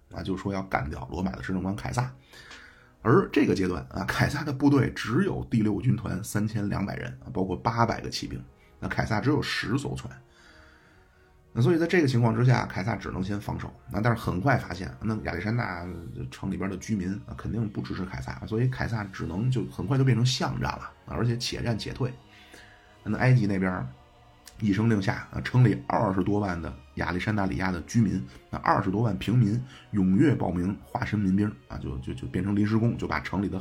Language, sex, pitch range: Chinese, male, 90-115 Hz